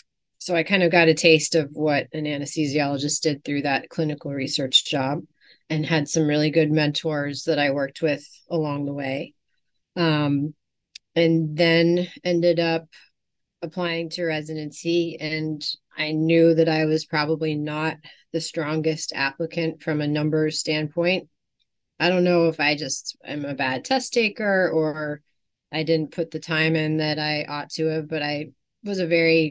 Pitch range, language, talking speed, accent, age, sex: 145-165 Hz, English, 165 wpm, American, 30-49, female